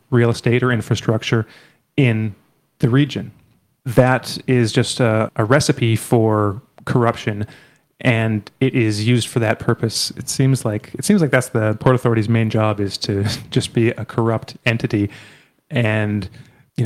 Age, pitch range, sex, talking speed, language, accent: 30-49, 110-130 Hz, male, 150 wpm, English, American